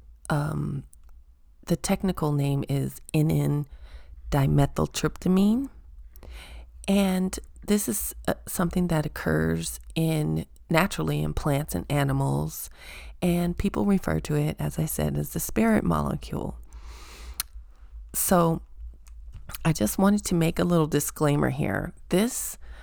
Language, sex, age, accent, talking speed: English, female, 30-49, American, 110 wpm